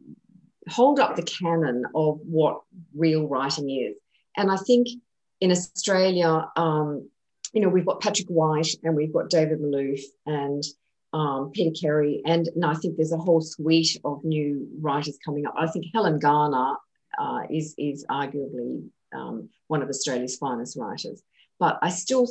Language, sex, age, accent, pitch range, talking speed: English, female, 40-59, Australian, 150-185 Hz, 160 wpm